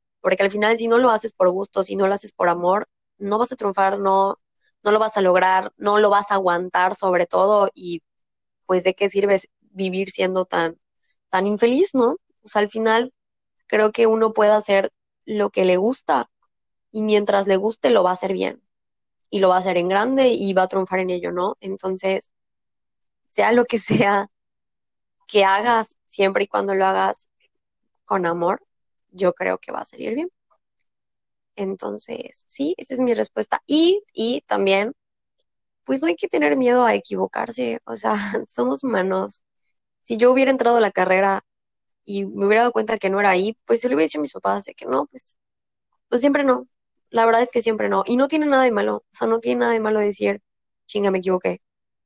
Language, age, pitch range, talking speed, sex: Spanish, 20-39, 185-230 Hz, 205 wpm, female